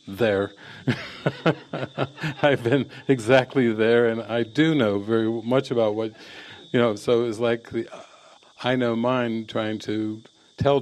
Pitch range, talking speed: 105-120 Hz, 145 wpm